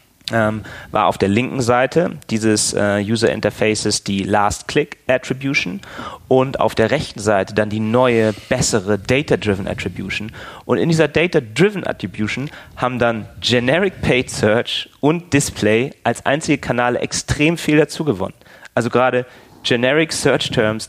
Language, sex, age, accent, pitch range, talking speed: German, male, 30-49, German, 110-130 Hz, 120 wpm